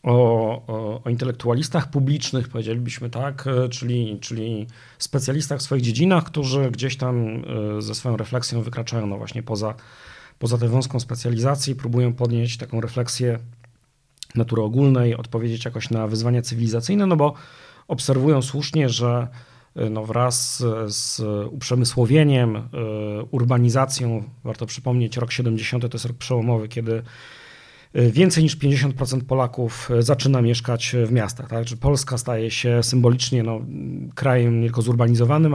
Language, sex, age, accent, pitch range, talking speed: Polish, male, 40-59, native, 115-130 Hz, 120 wpm